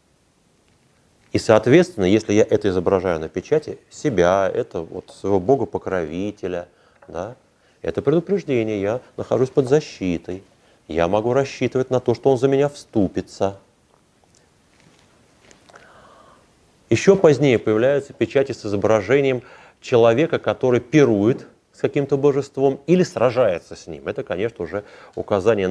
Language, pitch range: Russian, 100-145 Hz